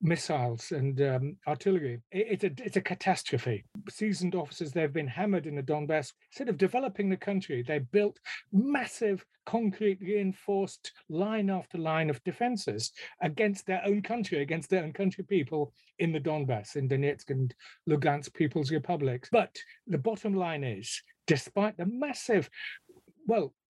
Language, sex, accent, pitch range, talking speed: English, male, British, 145-200 Hz, 145 wpm